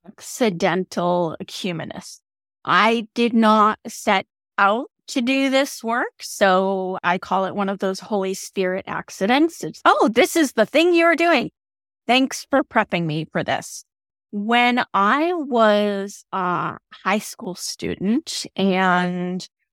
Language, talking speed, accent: English, 130 wpm, American